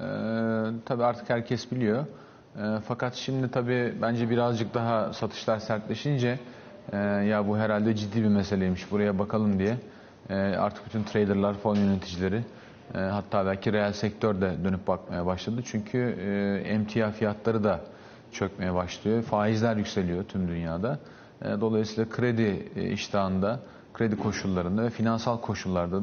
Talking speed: 135 wpm